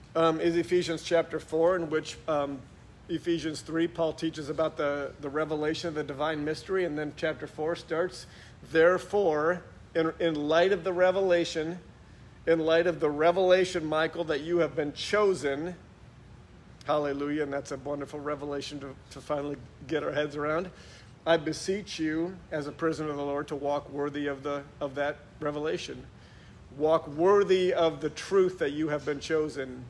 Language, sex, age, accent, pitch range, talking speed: English, male, 50-69, American, 145-165 Hz, 165 wpm